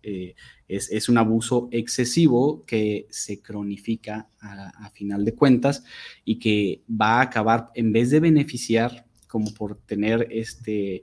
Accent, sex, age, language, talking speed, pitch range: Mexican, male, 20-39, Spanish, 145 wpm, 110-130 Hz